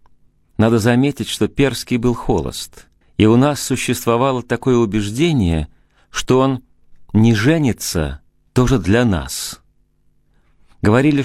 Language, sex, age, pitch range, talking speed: Russian, male, 40-59, 85-115 Hz, 105 wpm